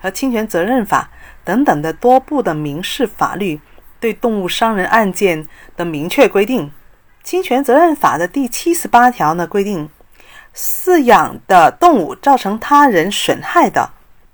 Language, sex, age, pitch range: Chinese, female, 40-59, 185-280 Hz